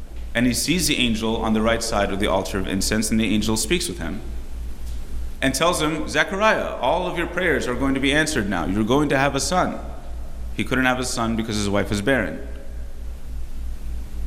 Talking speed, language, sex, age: 210 wpm, English, male, 30-49